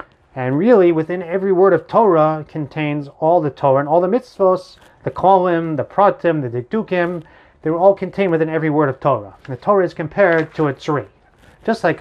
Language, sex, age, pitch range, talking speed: English, male, 30-49, 140-190 Hz, 195 wpm